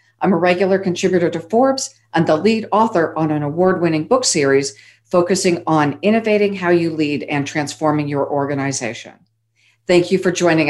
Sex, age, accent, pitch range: female, 50-69, American, 165-205 Hz